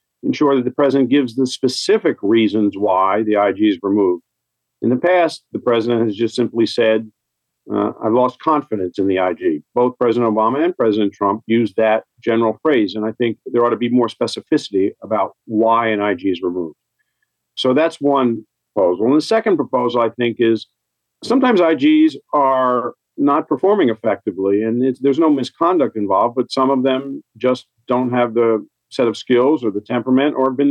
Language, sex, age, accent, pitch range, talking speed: English, male, 50-69, American, 110-140 Hz, 185 wpm